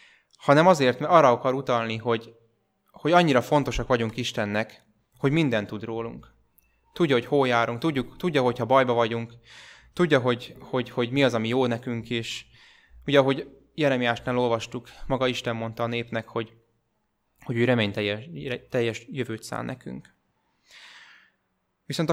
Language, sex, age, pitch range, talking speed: Hungarian, male, 20-39, 115-135 Hz, 150 wpm